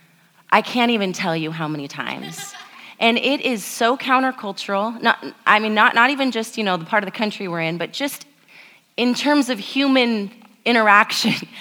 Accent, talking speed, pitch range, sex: American, 185 wpm, 175-235 Hz, female